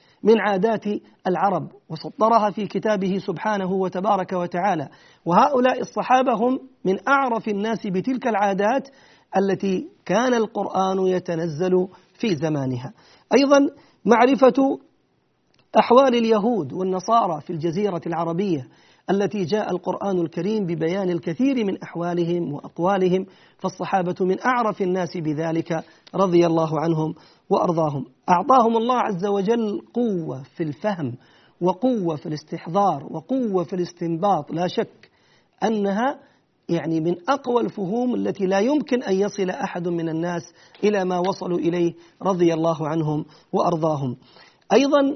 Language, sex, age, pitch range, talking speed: Arabic, male, 40-59, 170-225 Hz, 115 wpm